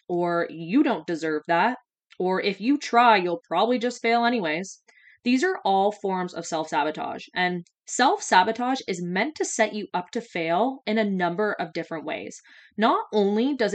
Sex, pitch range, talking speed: female, 175-240 Hz, 180 wpm